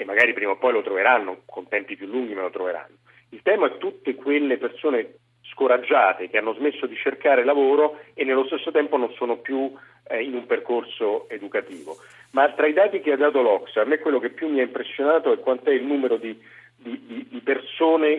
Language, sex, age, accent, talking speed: Italian, male, 40-59, native, 210 wpm